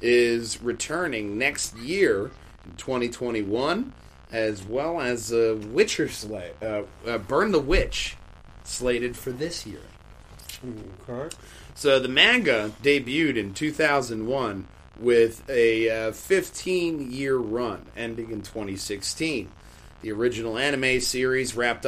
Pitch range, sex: 105-130 Hz, male